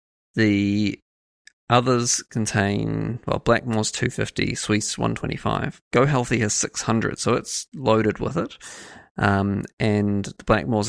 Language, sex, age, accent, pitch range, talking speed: English, male, 20-39, Australian, 100-120 Hz, 115 wpm